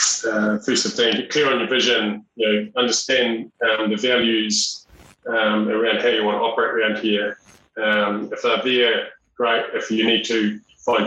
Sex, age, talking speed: male, 30-49, 175 wpm